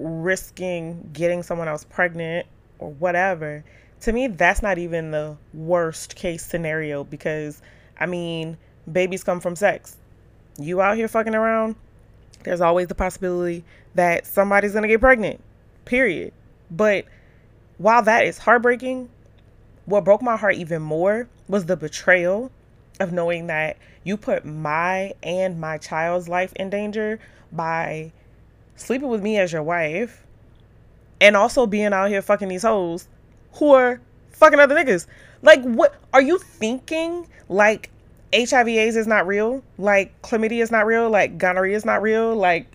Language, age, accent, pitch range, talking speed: English, 20-39, American, 155-220 Hz, 145 wpm